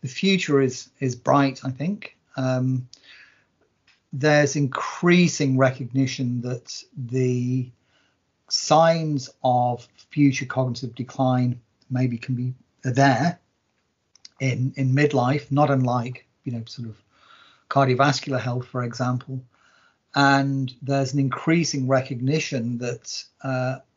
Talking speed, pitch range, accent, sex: 105 wpm, 125-140 Hz, British, male